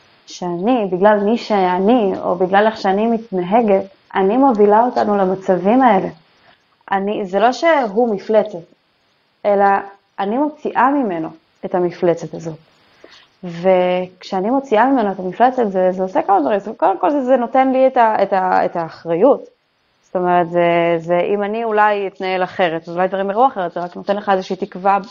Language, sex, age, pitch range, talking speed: Hebrew, female, 20-39, 185-230 Hz, 155 wpm